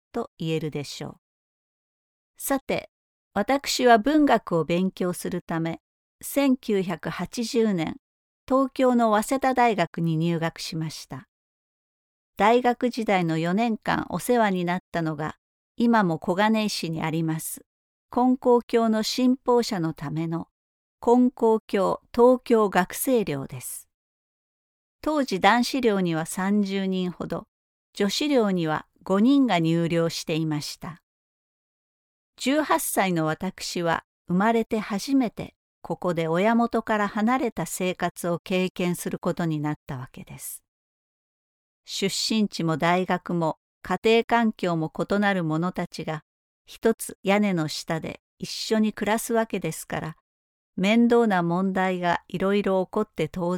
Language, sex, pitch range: Japanese, female, 165-230 Hz